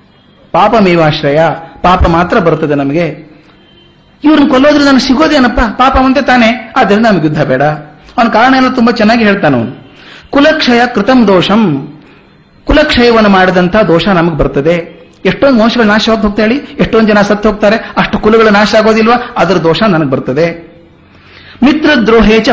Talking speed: 130 wpm